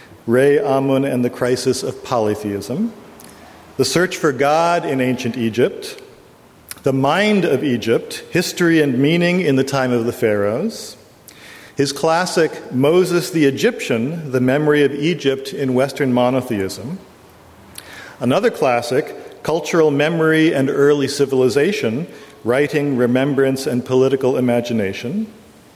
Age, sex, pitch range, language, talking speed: 40-59, male, 130-165 Hz, English, 120 wpm